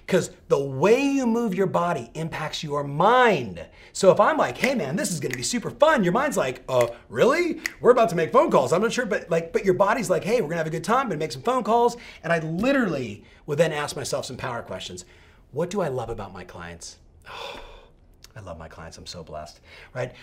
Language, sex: English, male